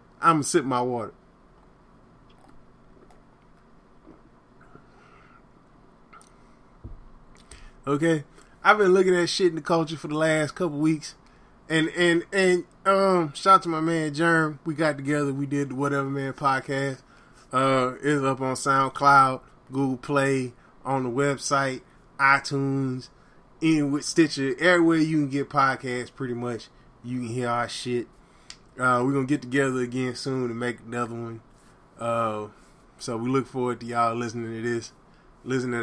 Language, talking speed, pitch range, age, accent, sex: English, 145 wpm, 125-160 Hz, 20-39, American, male